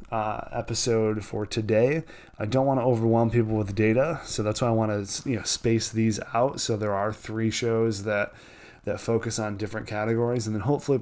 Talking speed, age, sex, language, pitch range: 200 wpm, 20-39, male, English, 105-120 Hz